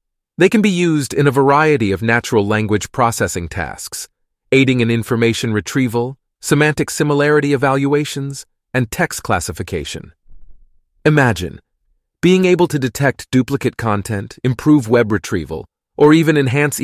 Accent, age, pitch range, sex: American, 30-49, 115-155 Hz, male